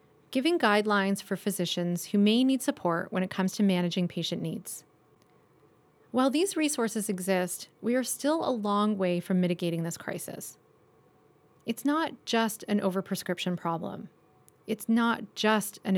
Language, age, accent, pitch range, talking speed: English, 30-49, American, 180-225 Hz, 145 wpm